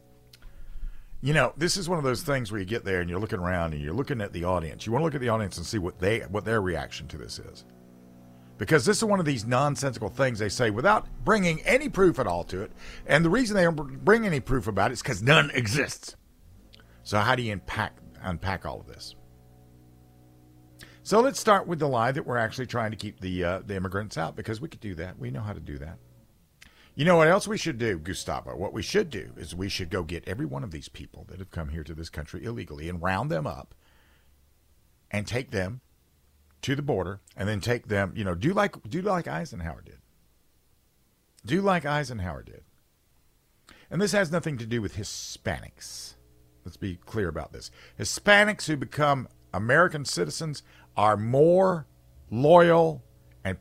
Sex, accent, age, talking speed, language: male, American, 50-69, 210 wpm, English